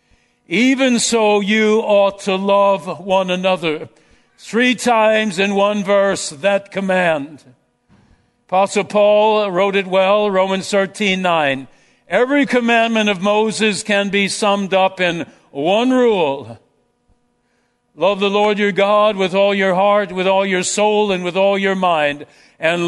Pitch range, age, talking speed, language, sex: 180-215 Hz, 60-79, 140 wpm, English, male